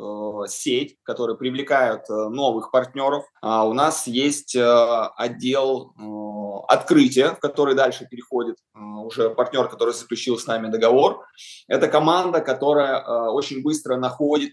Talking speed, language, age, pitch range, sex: 110 wpm, Russian, 20-39, 120-150 Hz, male